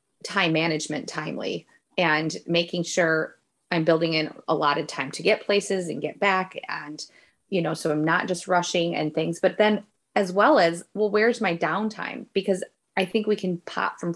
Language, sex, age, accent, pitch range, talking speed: English, female, 20-39, American, 165-200 Hz, 190 wpm